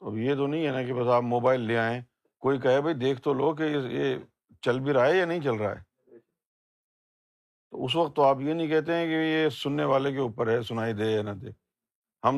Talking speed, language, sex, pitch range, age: 245 wpm, Urdu, male, 120-160 Hz, 50-69